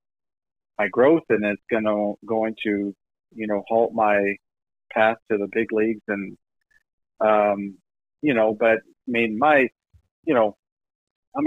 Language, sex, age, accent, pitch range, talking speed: English, male, 40-59, American, 110-130 Hz, 145 wpm